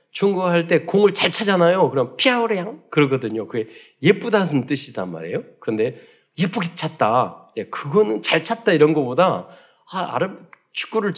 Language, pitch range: Korean, 135-205 Hz